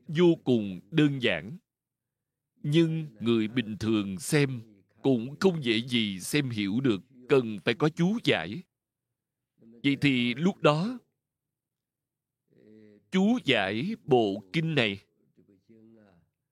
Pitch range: 115-155 Hz